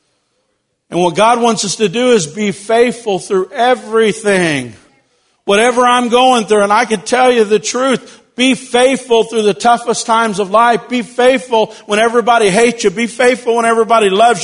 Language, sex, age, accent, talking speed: English, male, 50-69, American, 175 wpm